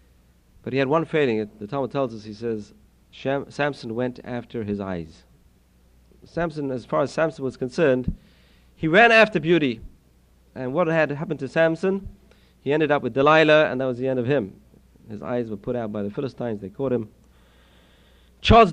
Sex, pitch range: male, 100-155 Hz